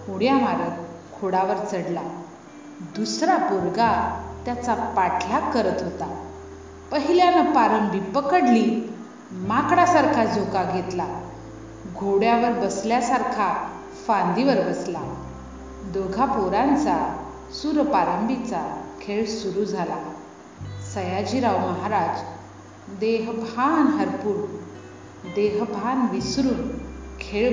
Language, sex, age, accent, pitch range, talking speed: Hindi, female, 40-59, native, 165-245 Hz, 60 wpm